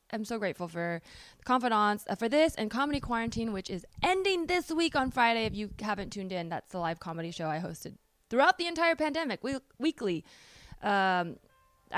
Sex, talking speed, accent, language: female, 190 wpm, American, English